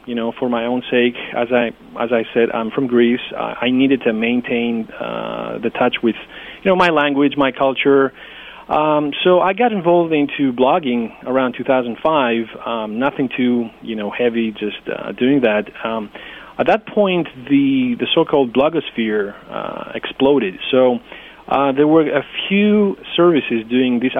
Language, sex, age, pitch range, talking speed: English, male, 30-49, 120-150 Hz, 165 wpm